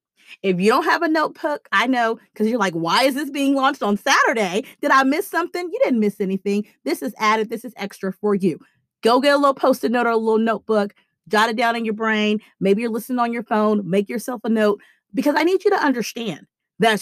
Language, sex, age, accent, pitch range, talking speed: English, female, 40-59, American, 195-275 Hz, 235 wpm